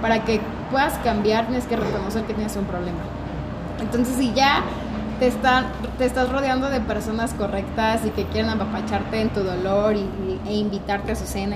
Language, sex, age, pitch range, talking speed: Spanish, female, 20-39, 200-225 Hz, 185 wpm